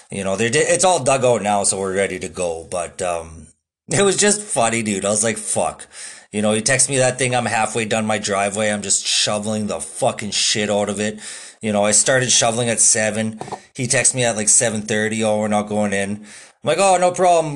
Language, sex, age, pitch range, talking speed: English, male, 20-39, 110-150 Hz, 235 wpm